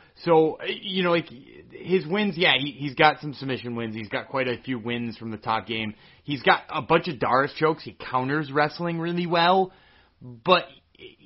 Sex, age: male, 30-49